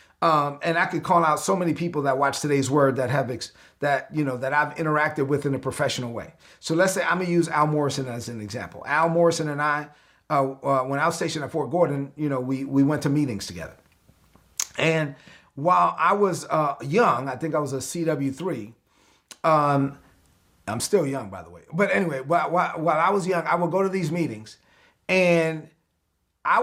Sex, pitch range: male, 140-175 Hz